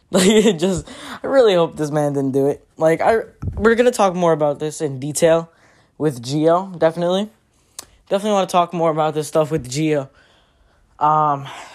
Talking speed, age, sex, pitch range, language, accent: 185 wpm, 10-29, male, 140-175 Hz, English, American